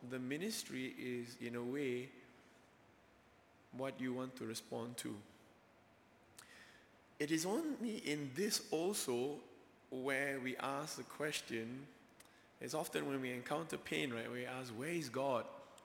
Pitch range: 120-150 Hz